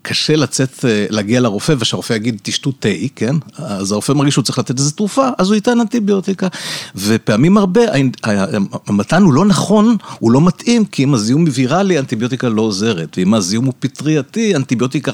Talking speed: 165 wpm